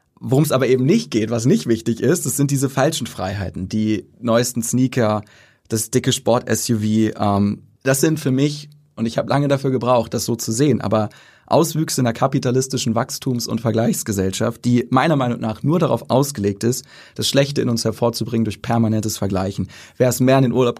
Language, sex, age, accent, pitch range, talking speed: German, male, 30-49, German, 115-140 Hz, 190 wpm